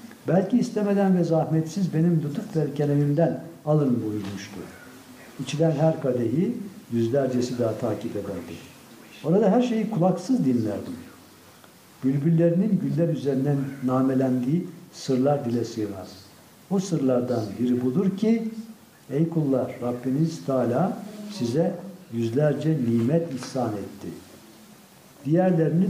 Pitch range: 120-170 Hz